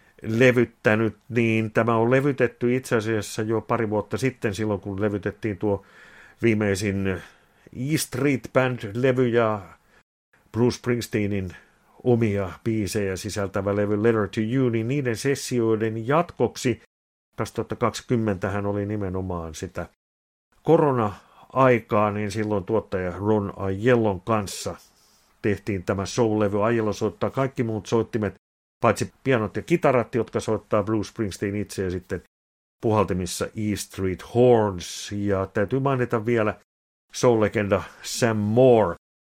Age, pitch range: 50-69, 100-120 Hz